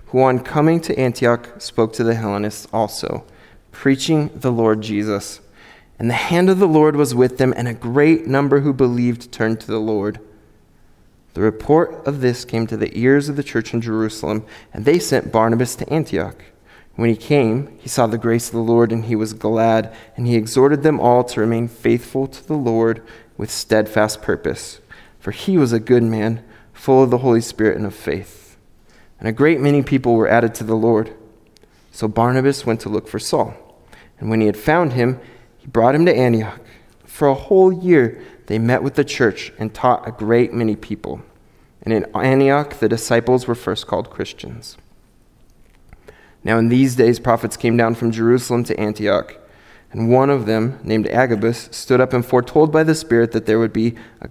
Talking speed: 195 wpm